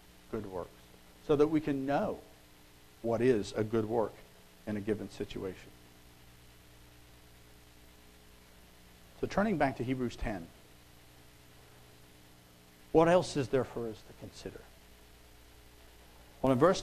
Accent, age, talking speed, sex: American, 60-79, 120 wpm, male